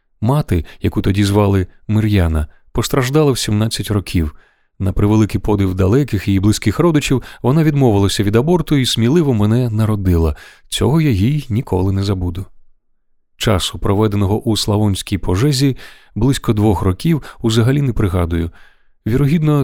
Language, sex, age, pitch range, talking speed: Ukrainian, male, 30-49, 95-130 Hz, 130 wpm